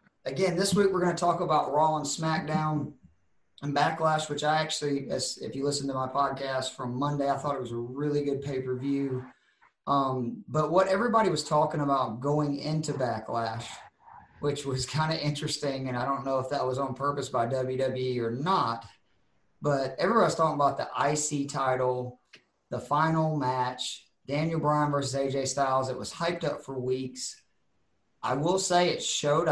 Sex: male